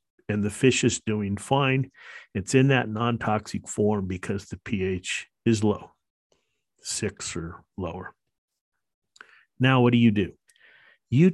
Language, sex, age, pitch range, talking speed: English, male, 50-69, 100-130 Hz, 130 wpm